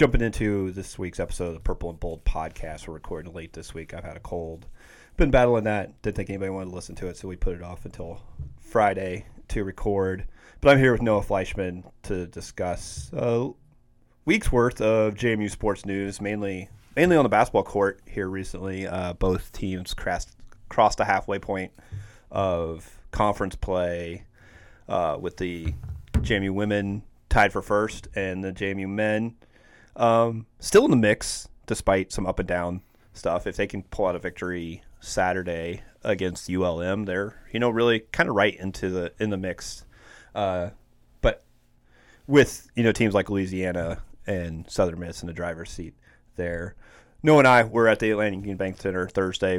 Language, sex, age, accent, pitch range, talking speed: English, male, 30-49, American, 90-110 Hz, 175 wpm